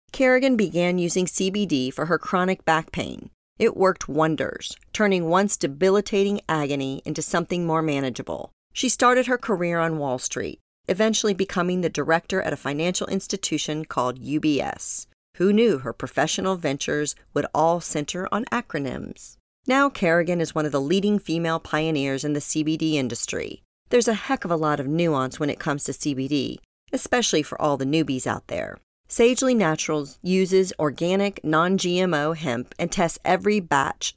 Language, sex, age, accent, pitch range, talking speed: English, female, 40-59, American, 150-195 Hz, 155 wpm